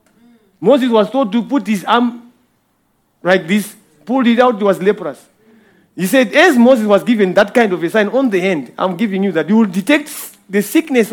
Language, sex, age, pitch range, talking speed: English, male, 40-59, 180-235 Hz, 205 wpm